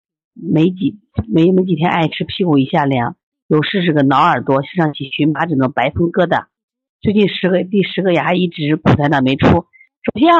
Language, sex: Chinese, female